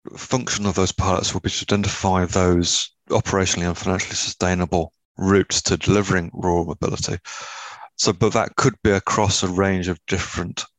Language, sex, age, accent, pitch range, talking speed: English, male, 30-49, British, 90-105 Hz, 155 wpm